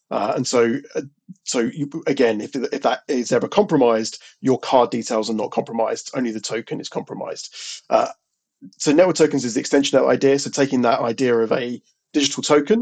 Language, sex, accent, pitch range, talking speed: English, male, British, 120-145 Hz, 195 wpm